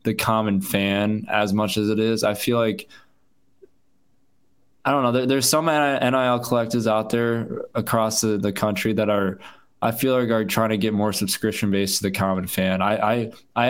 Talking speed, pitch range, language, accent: 180 wpm, 100-110 Hz, English, American